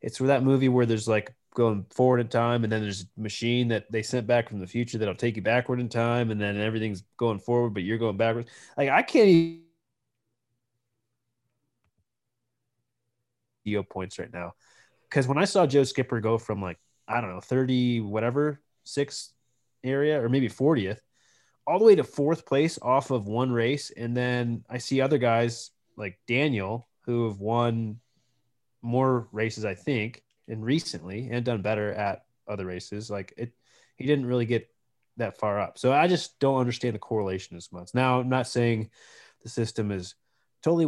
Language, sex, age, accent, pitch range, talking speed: English, male, 20-39, American, 110-130 Hz, 180 wpm